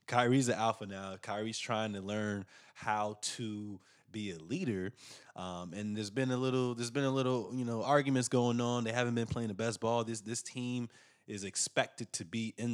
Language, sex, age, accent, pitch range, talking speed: English, male, 20-39, American, 95-115 Hz, 205 wpm